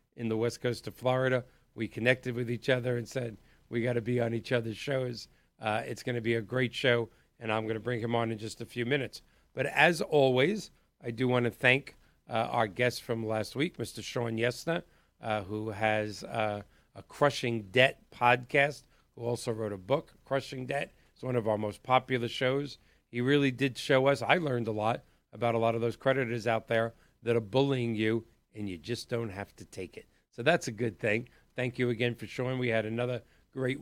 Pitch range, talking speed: 110-130 Hz, 215 wpm